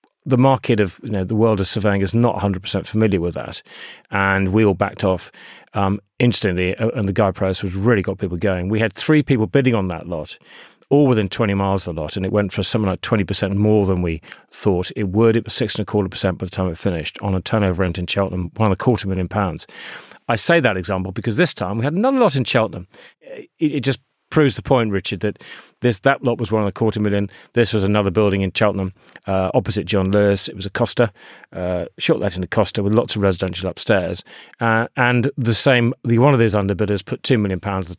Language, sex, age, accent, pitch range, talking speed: English, male, 40-59, British, 95-120 Hz, 235 wpm